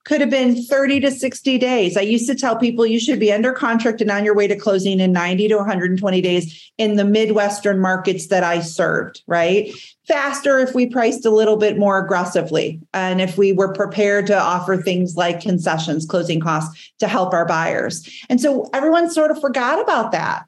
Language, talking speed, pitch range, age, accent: English, 200 wpm, 200-265 Hz, 40-59, American